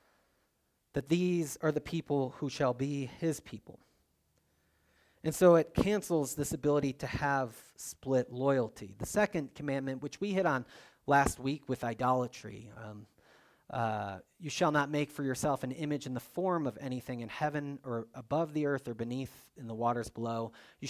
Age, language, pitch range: 30-49, English, 120-155 Hz